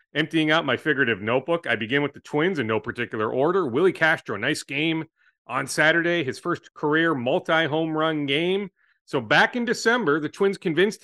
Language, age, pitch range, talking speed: English, 40-59, 130-170 Hz, 180 wpm